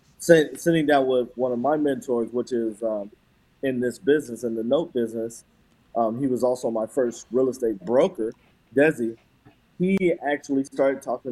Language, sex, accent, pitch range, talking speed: English, male, American, 115-135 Hz, 165 wpm